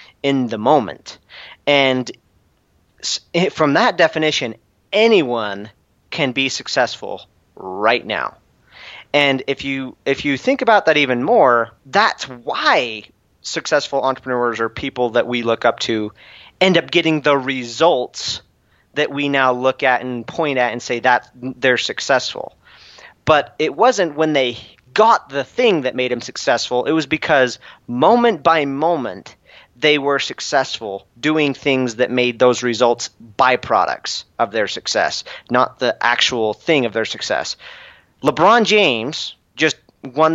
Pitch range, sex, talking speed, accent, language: 125-155 Hz, male, 140 wpm, American, English